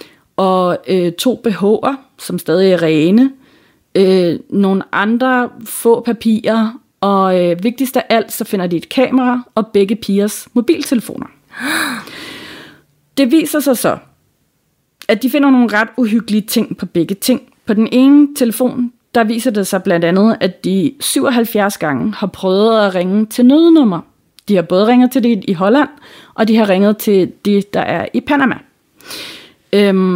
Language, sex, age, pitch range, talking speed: Danish, female, 30-49, 190-245 Hz, 160 wpm